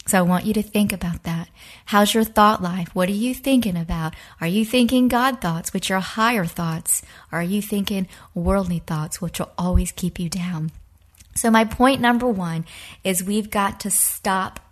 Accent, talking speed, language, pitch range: American, 190 wpm, English, 180-225 Hz